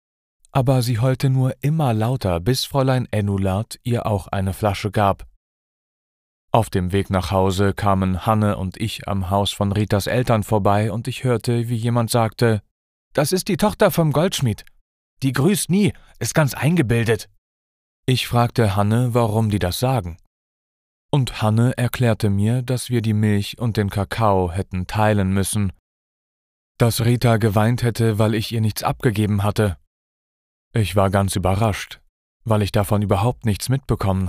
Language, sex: German, male